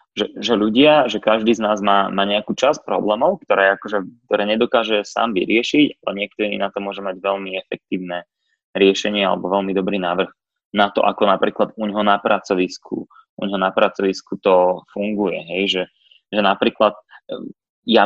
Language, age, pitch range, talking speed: Slovak, 20-39, 100-115 Hz, 155 wpm